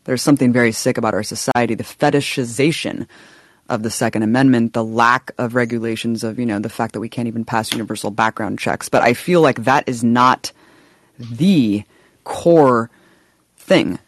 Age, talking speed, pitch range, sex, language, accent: 20-39, 170 wpm, 115-130 Hz, female, English, American